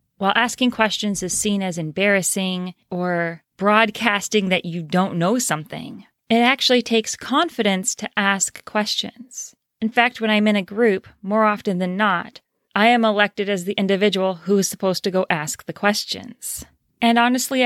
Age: 30-49